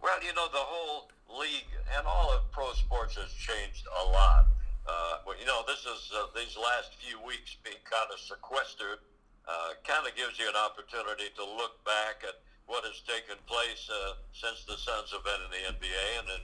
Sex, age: male, 60-79